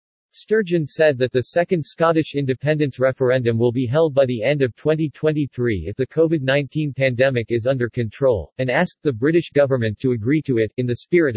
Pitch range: 120-150 Hz